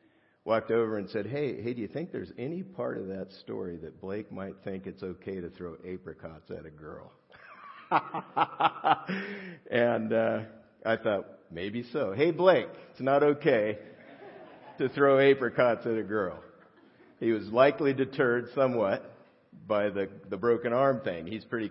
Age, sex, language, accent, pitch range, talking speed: 50-69, male, English, American, 105-135 Hz, 160 wpm